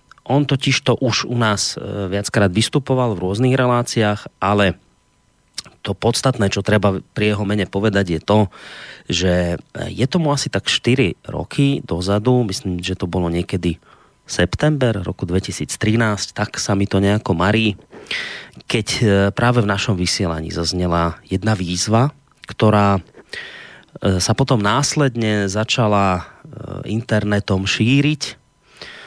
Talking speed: 120 wpm